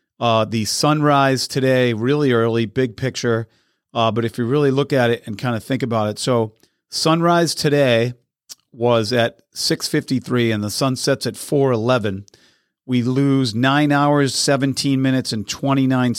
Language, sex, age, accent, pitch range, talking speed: English, male, 40-59, American, 115-145 Hz, 160 wpm